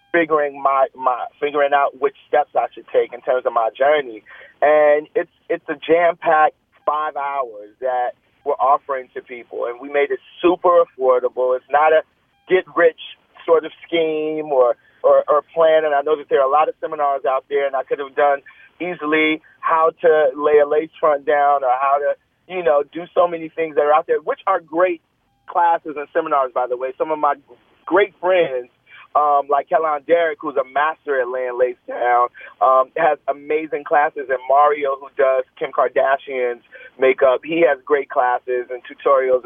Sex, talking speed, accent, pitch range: male, 190 wpm, American, 135-175 Hz